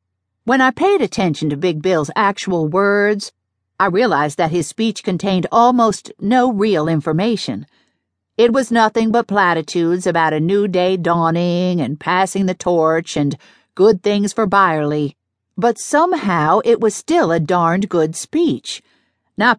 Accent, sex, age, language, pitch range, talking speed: American, female, 50-69, English, 155-215 Hz, 145 wpm